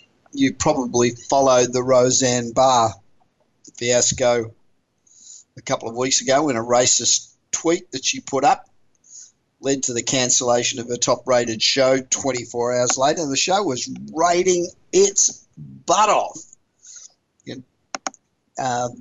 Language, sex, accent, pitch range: English, male, Australian, 125-165 Hz